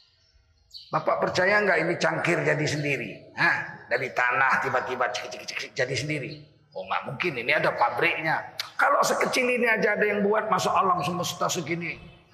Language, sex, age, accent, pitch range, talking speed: Indonesian, male, 40-59, native, 135-180 Hz, 145 wpm